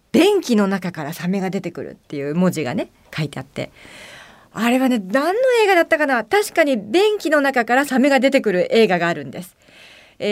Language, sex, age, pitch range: Japanese, female, 40-59, 185-290 Hz